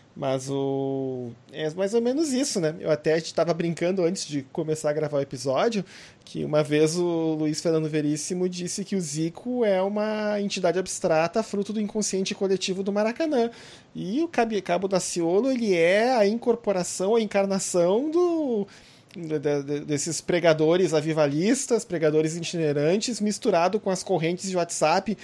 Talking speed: 145 wpm